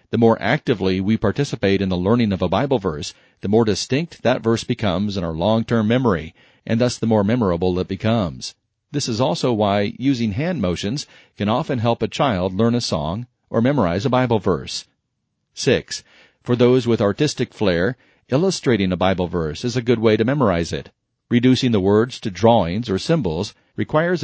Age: 40-59